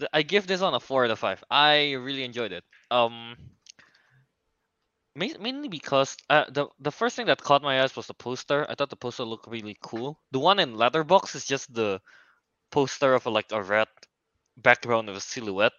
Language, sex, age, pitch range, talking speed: English, male, 20-39, 110-140 Hz, 200 wpm